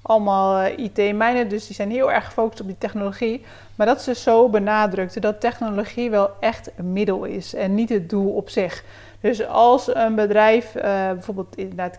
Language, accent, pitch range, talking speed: Dutch, Dutch, 200-230 Hz, 180 wpm